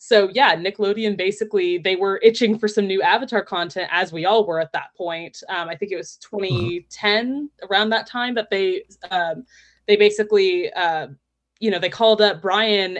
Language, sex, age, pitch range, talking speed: English, female, 20-39, 180-225 Hz, 185 wpm